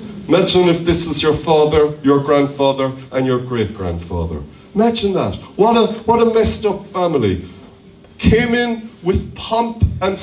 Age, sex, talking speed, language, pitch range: 40-59, male, 140 wpm, English, 140-215 Hz